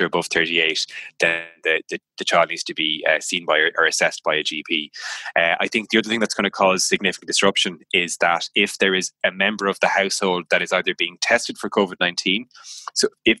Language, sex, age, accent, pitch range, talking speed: English, male, 20-39, Irish, 95-105 Hz, 220 wpm